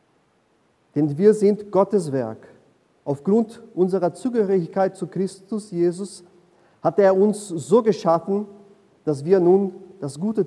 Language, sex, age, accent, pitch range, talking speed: German, male, 40-59, German, 150-195 Hz, 120 wpm